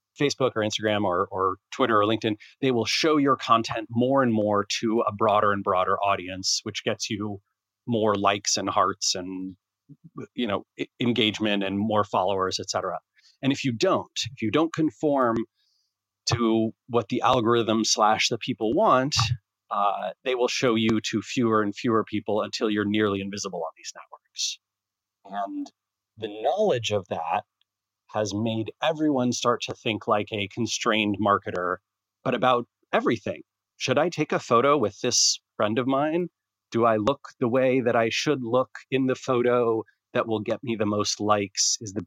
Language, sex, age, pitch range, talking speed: English, male, 30-49, 105-125 Hz, 170 wpm